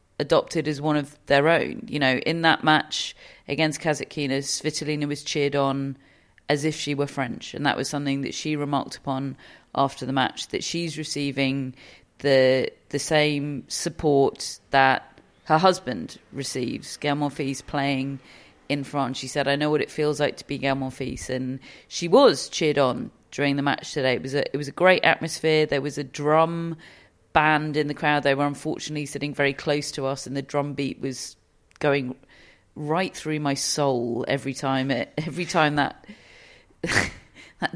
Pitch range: 135-150 Hz